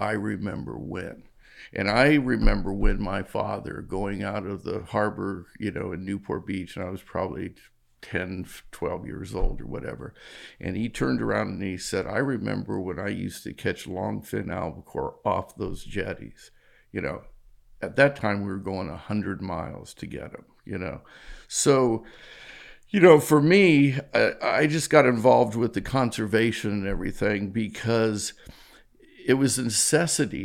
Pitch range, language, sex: 100-125 Hz, English, male